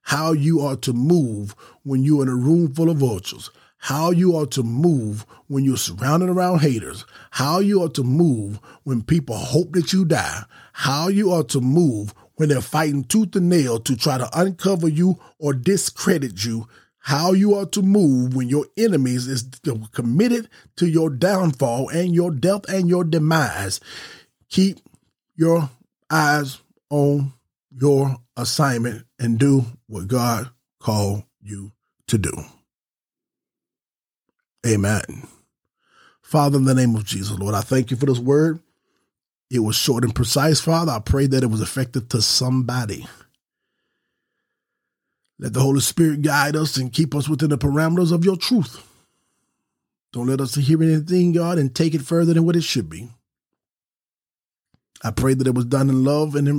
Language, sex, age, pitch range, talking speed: English, male, 30-49, 125-165 Hz, 165 wpm